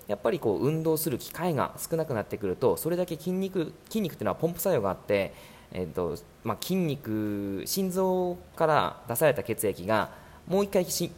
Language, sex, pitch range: Japanese, male, 100-170 Hz